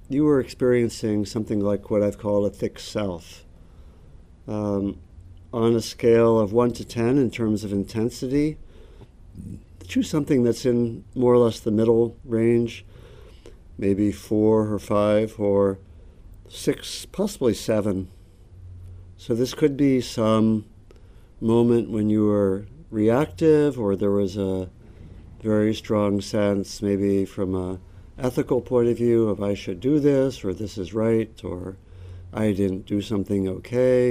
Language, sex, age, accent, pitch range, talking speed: English, male, 60-79, American, 95-115 Hz, 140 wpm